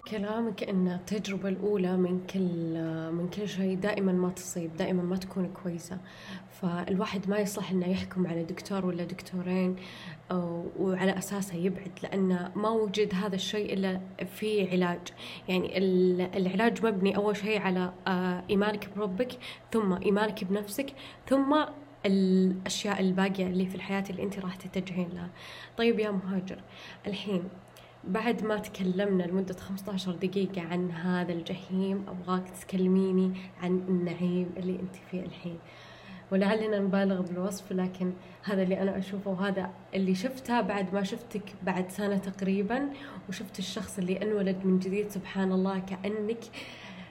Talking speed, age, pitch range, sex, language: 135 wpm, 20-39, 185-210 Hz, female, Arabic